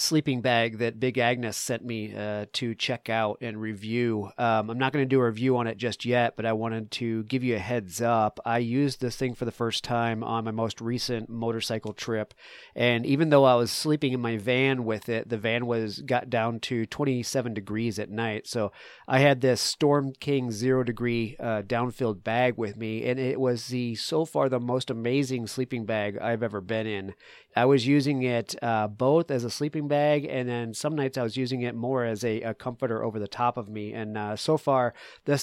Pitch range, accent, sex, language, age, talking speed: 110-130 Hz, American, male, English, 40-59, 220 wpm